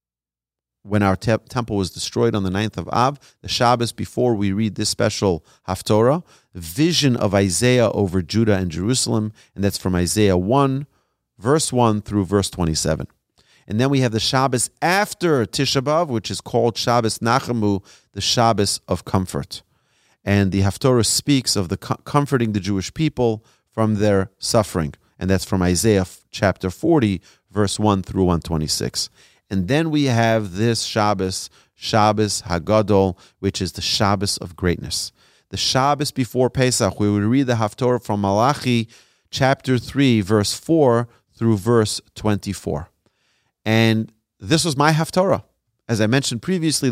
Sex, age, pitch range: male, 40-59, 100-130 Hz